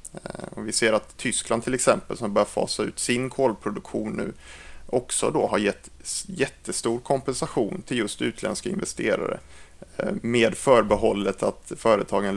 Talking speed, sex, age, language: 140 wpm, male, 30-49, Swedish